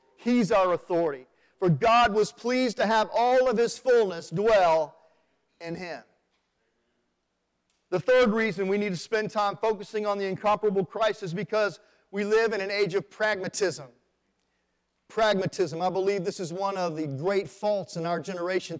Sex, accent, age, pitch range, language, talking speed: male, American, 40-59, 200-280 Hz, English, 165 wpm